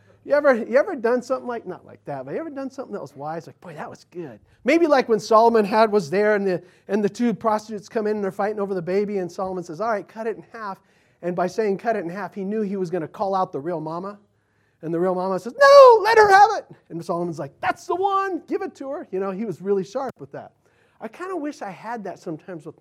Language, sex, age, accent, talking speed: English, male, 40-59, American, 275 wpm